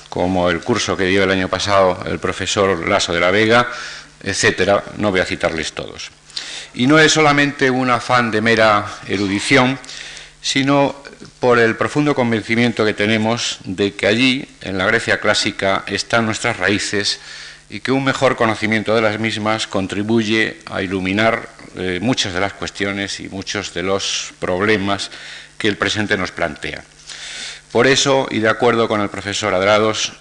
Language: Spanish